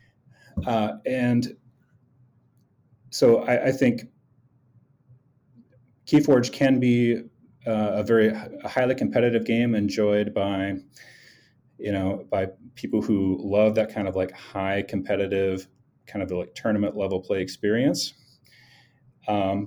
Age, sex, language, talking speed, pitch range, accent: 30-49, male, English, 115 wpm, 95-125 Hz, American